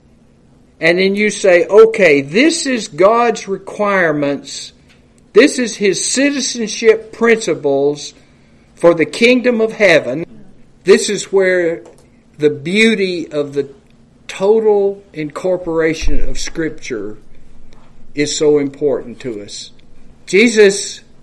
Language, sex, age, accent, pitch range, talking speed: English, male, 50-69, American, 155-230 Hz, 100 wpm